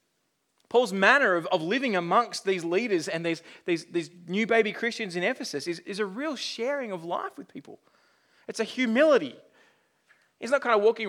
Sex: male